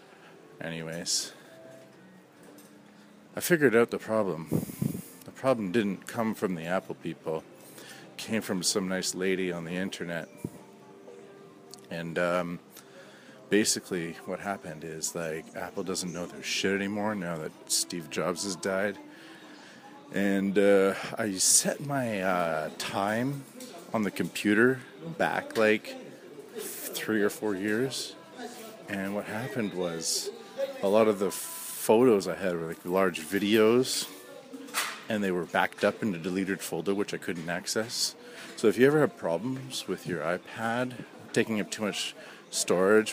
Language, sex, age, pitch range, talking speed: English, male, 40-59, 90-115 Hz, 140 wpm